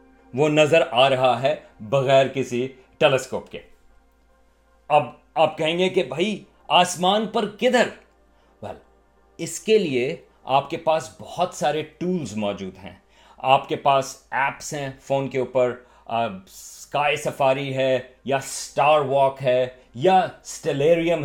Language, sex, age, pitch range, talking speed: Urdu, male, 40-59, 130-165 Hz, 135 wpm